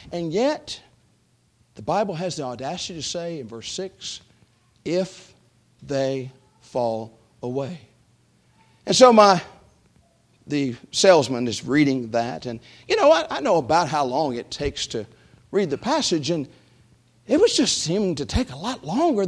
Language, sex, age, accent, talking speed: English, male, 50-69, American, 155 wpm